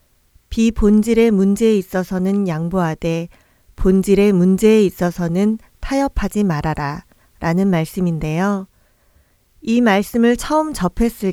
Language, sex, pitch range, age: Korean, female, 175-225 Hz, 40-59